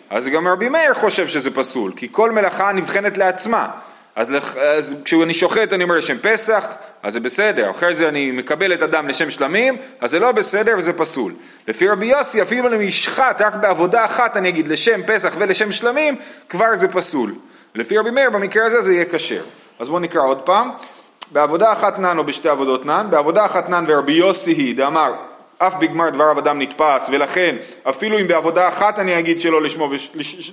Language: Hebrew